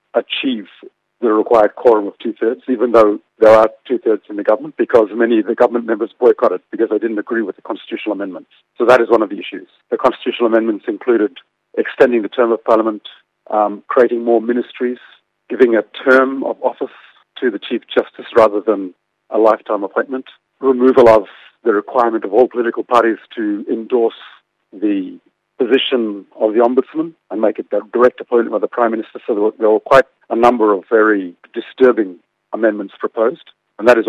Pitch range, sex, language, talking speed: 110-150 Hz, male, English, 180 wpm